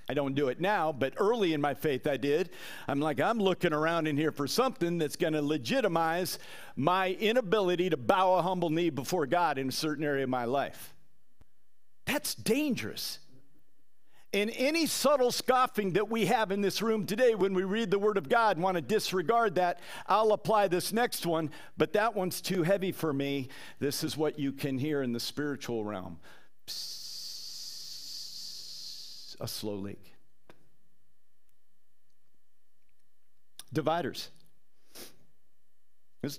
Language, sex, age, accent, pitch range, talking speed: English, male, 50-69, American, 130-180 Hz, 155 wpm